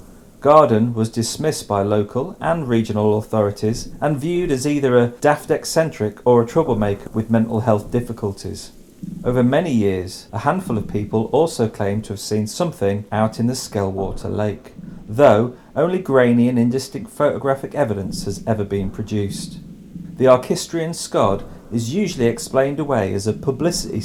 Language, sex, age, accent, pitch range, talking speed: English, male, 40-59, British, 105-140 Hz, 150 wpm